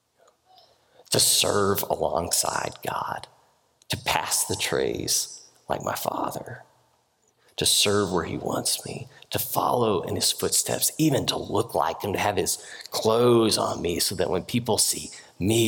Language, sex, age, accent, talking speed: English, male, 40-59, American, 150 wpm